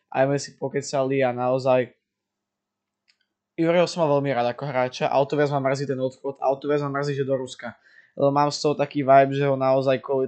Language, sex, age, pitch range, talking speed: Slovak, male, 20-39, 130-155 Hz, 205 wpm